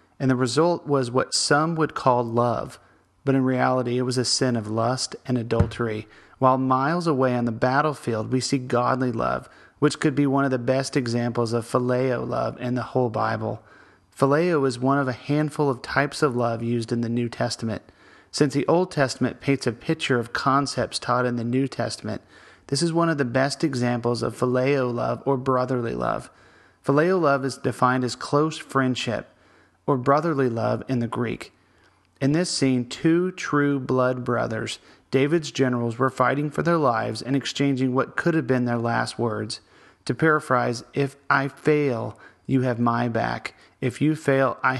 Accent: American